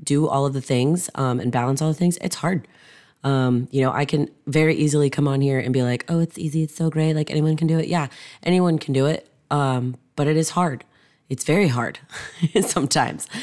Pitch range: 125-155 Hz